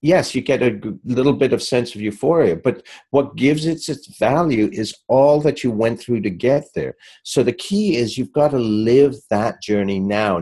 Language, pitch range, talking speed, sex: English, 110-150 Hz, 205 wpm, male